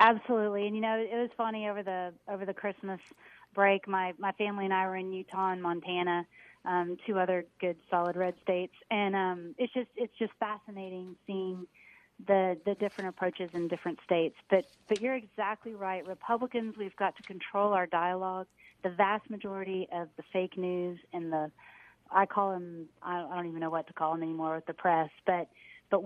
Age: 30-49